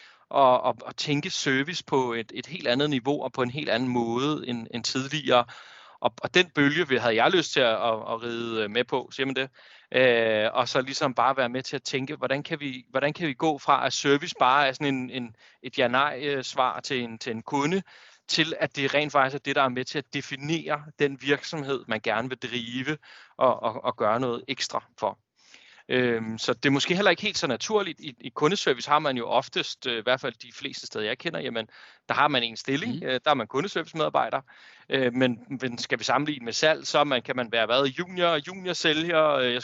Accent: native